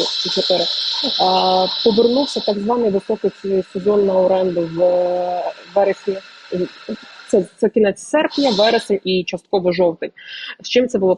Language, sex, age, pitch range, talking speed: Ukrainian, female, 20-39, 175-215 Hz, 115 wpm